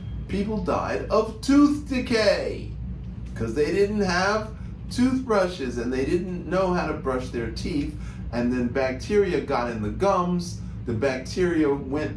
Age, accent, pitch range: 50-69, American, 105-175 Hz